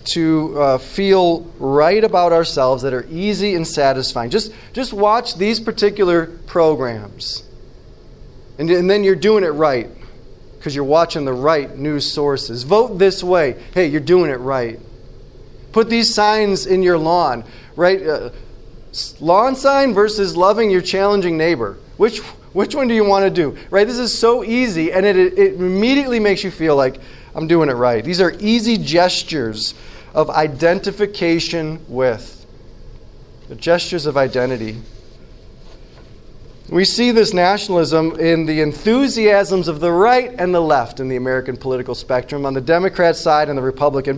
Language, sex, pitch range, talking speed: English, male, 145-215 Hz, 155 wpm